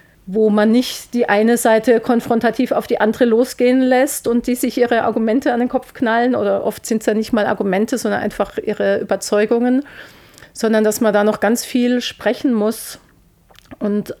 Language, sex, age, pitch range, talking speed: German, female, 40-59, 210-240 Hz, 180 wpm